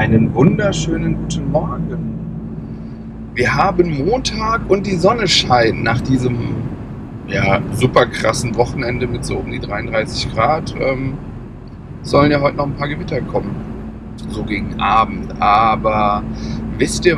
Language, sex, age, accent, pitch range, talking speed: German, male, 40-59, German, 115-145 Hz, 135 wpm